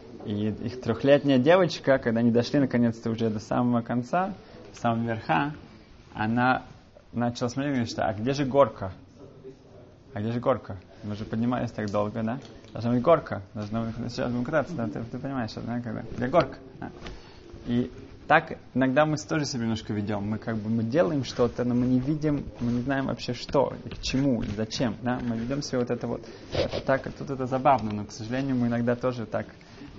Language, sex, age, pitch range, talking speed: Russian, male, 20-39, 110-125 Hz, 195 wpm